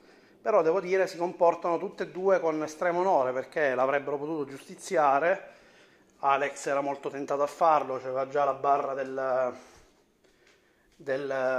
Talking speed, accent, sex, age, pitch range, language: 140 wpm, native, male, 30-49, 130-150 Hz, Italian